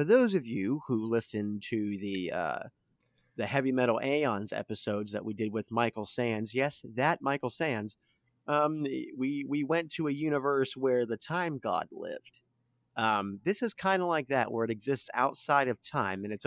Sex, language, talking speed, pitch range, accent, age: male, English, 185 wpm, 115-150 Hz, American, 30-49